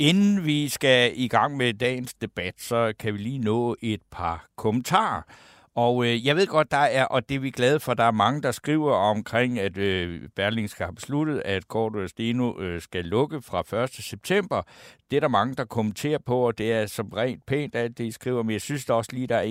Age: 60-79